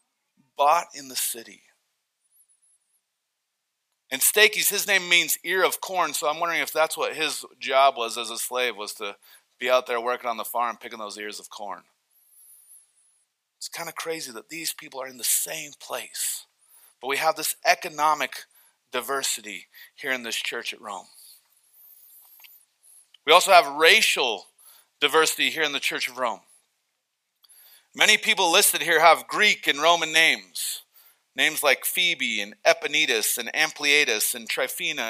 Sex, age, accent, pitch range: male, 40-59, American, 135-200 Hz